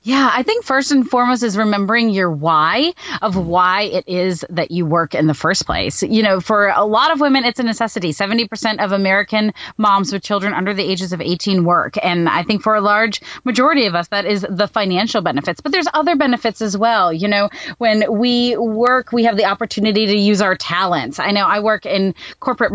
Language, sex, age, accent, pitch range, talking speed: English, female, 30-49, American, 200-245 Hz, 215 wpm